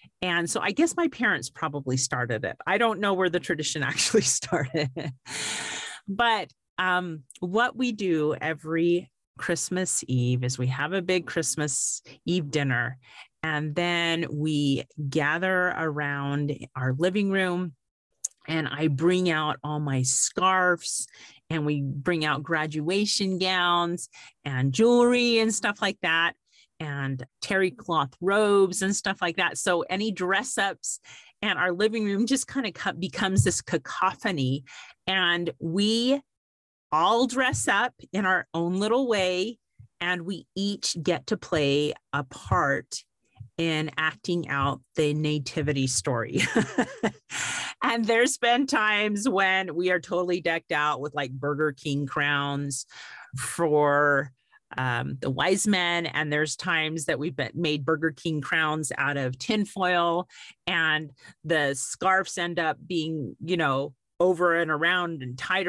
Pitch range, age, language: 145-185 Hz, 40-59, English